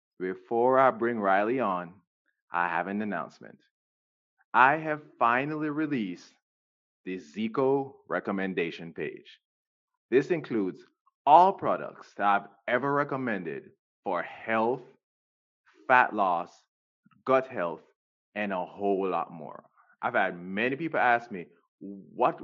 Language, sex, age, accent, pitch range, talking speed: English, male, 20-39, American, 95-140 Hz, 115 wpm